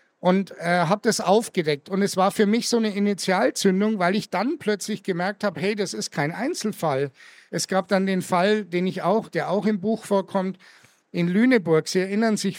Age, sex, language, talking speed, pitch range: 60-79, male, German, 200 wpm, 175-215 Hz